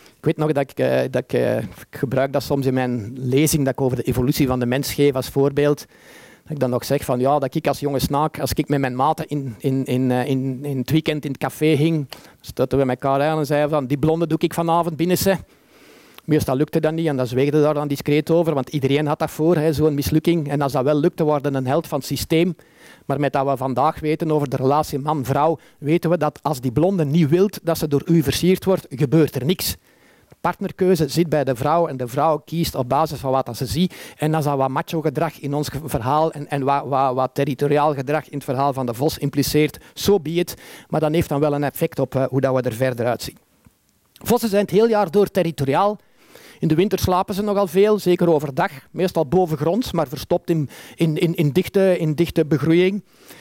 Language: Dutch